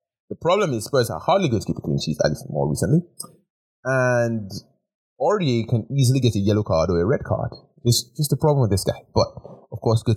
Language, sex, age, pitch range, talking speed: English, male, 30-49, 95-130 Hz, 230 wpm